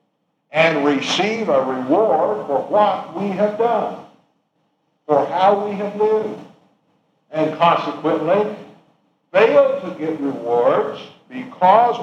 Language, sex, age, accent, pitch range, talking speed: English, male, 60-79, American, 155-215 Hz, 105 wpm